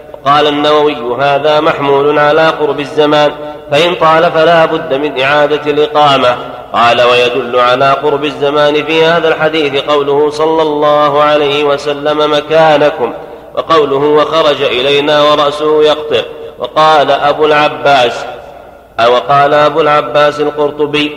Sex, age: male, 40-59